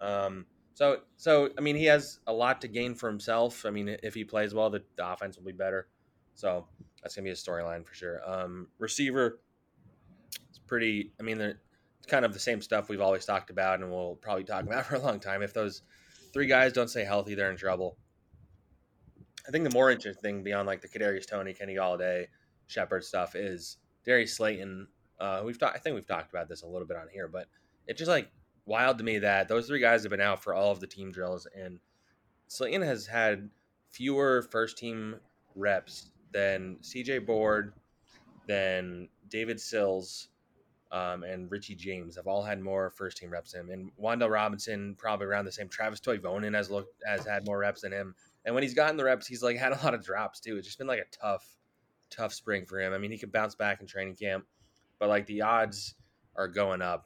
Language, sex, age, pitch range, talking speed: English, male, 20-39, 95-115 Hz, 215 wpm